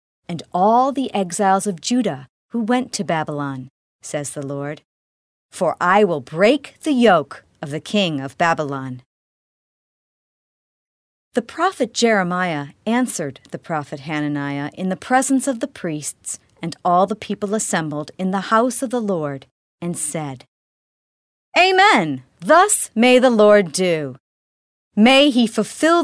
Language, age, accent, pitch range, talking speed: English, 50-69, American, 155-245 Hz, 135 wpm